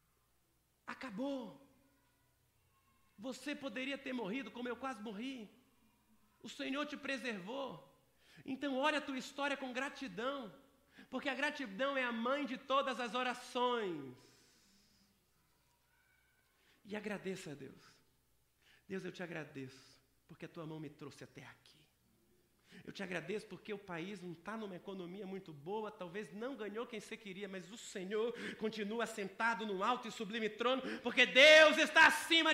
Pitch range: 180-260 Hz